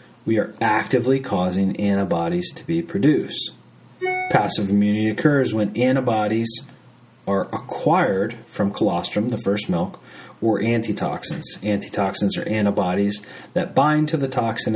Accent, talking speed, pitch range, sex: American, 120 wpm, 100-135 Hz, male